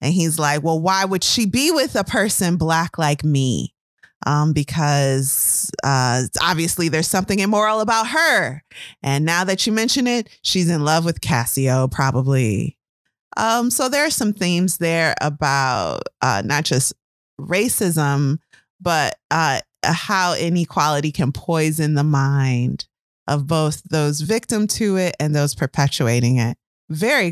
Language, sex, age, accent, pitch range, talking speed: English, female, 20-39, American, 150-210 Hz, 145 wpm